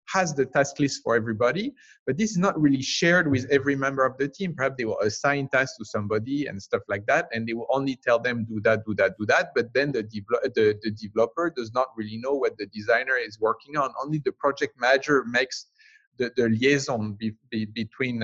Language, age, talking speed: English, 30-49, 215 wpm